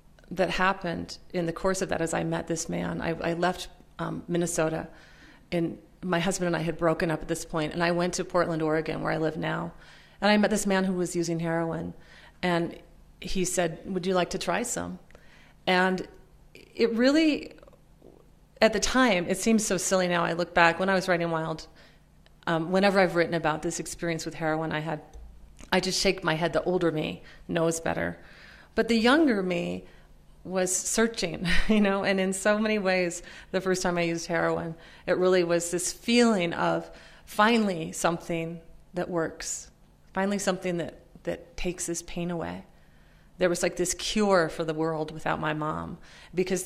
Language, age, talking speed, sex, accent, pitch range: English, 30-49, 185 wpm, female, American, 165-185 Hz